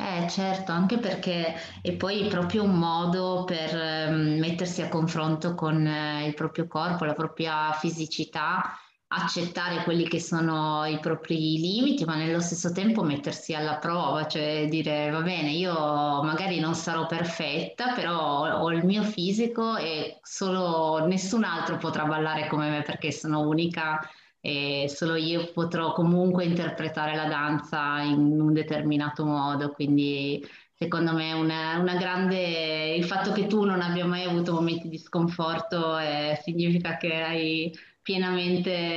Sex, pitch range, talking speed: female, 155-175 Hz, 150 wpm